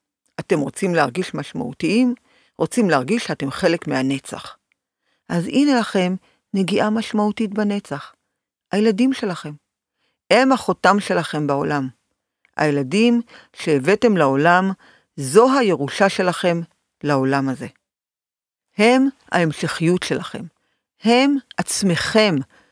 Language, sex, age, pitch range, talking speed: Hebrew, female, 50-69, 150-210 Hz, 90 wpm